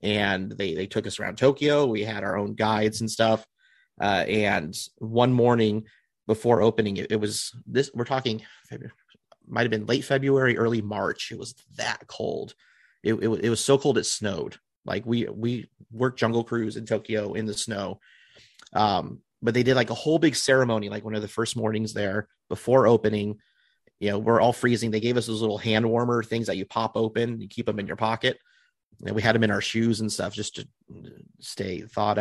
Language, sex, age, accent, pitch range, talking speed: English, male, 30-49, American, 105-120 Hz, 205 wpm